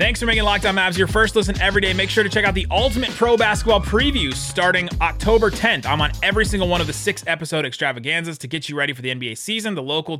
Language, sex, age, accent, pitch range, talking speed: English, male, 30-49, American, 125-175 Hz, 255 wpm